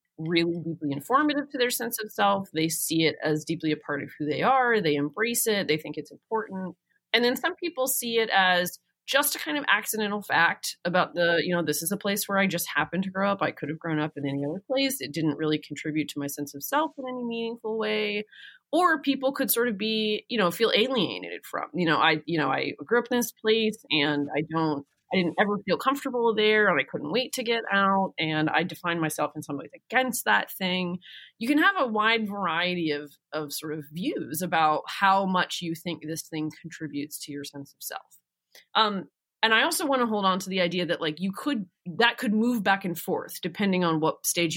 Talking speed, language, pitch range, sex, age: 230 wpm, English, 155-225 Hz, female, 30-49